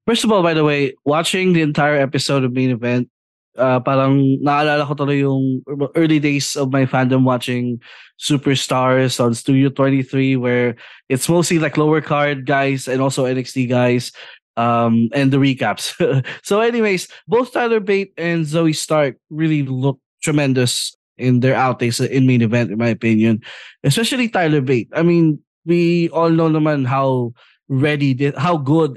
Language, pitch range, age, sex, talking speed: English, 130-155 Hz, 20-39, male, 160 wpm